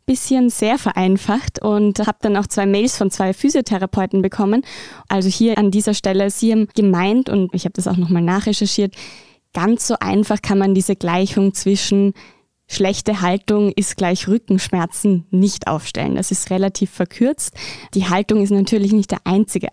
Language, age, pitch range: German, 20-39, 180-205 Hz